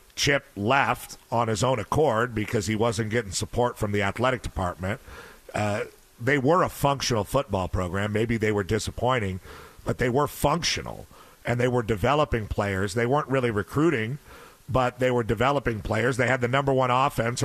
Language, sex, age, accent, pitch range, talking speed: English, male, 50-69, American, 110-140 Hz, 170 wpm